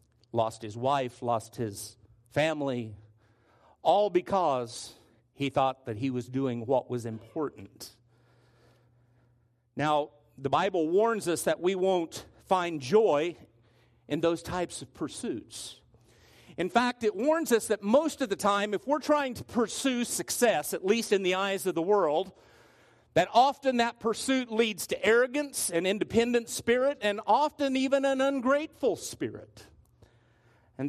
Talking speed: 140 wpm